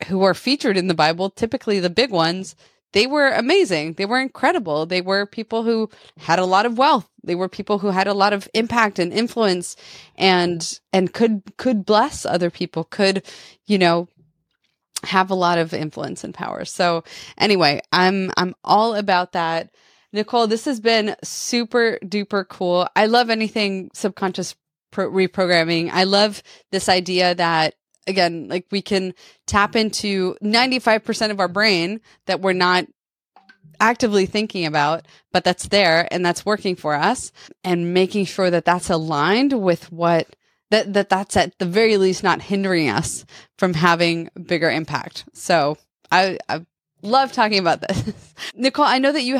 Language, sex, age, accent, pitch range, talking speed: English, female, 20-39, American, 175-225 Hz, 165 wpm